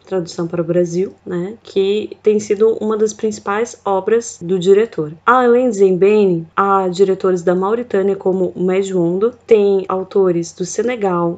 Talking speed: 140 wpm